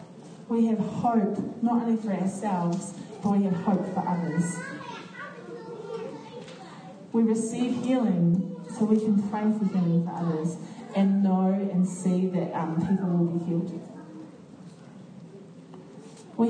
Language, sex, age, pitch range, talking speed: English, female, 10-29, 180-215 Hz, 125 wpm